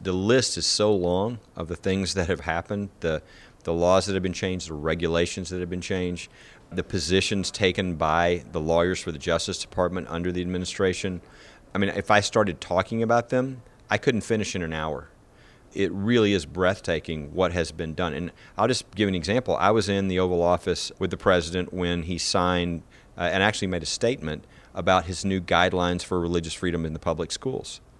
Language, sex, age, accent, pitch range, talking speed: English, male, 40-59, American, 85-95 Hz, 200 wpm